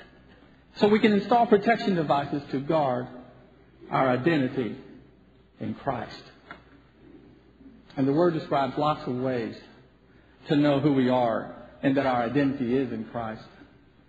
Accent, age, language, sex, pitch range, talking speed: American, 50-69, English, male, 145-215 Hz, 130 wpm